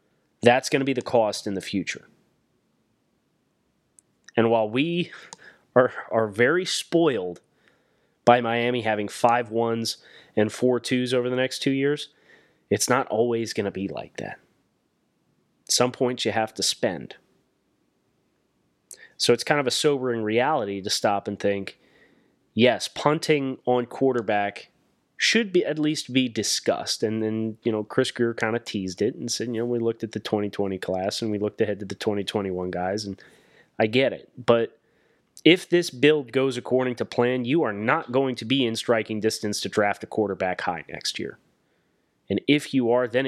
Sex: male